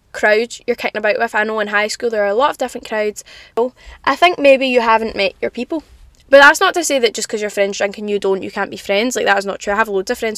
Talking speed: 305 wpm